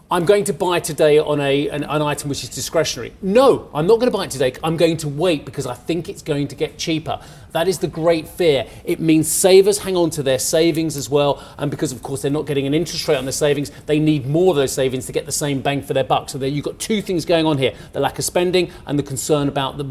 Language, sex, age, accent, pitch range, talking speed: English, male, 40-59, British, 135-180 Hz, 270 wpm